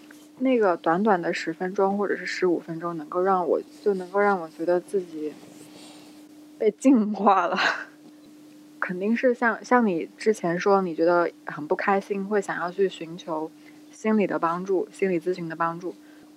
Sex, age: female, 20-39